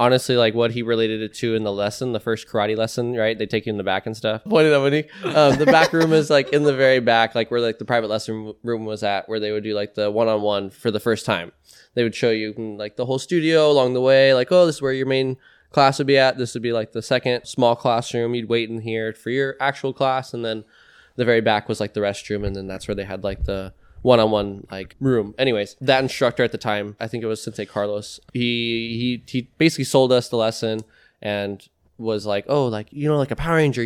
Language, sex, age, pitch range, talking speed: English, male, 10-29, 110-130 Hz, 255 wpm